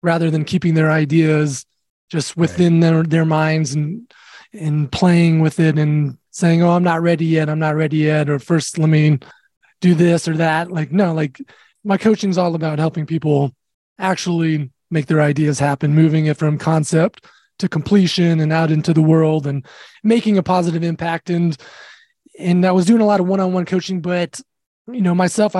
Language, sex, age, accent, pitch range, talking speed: English, male, 20-39, American, 160-185 Hz, 185 wpm